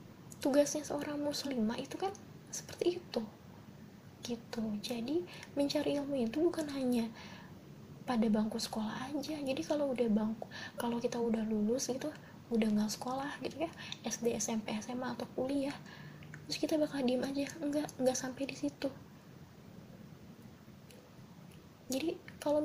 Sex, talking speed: female, 130 wpm